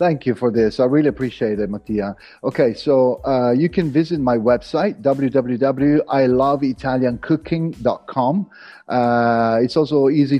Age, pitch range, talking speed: 40-59, 130-155 Hz, 120 wpm